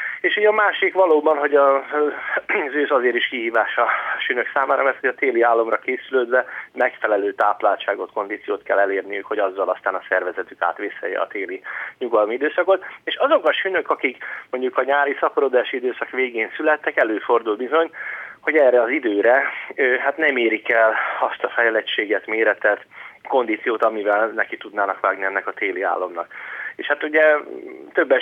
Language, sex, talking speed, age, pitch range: Hungarian, male, 155 wpm, 30-49, 125-170 Hz